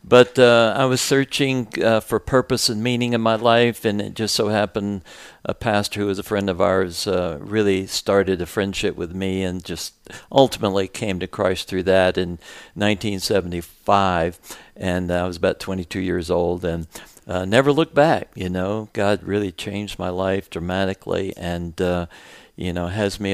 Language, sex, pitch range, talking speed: English, male, 90-110 Hz, 175 wpm